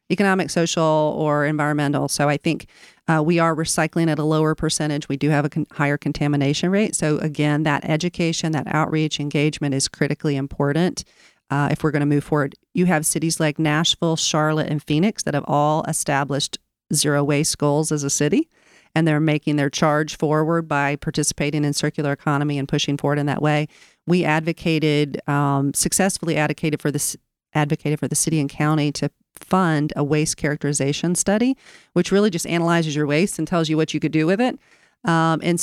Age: 40-59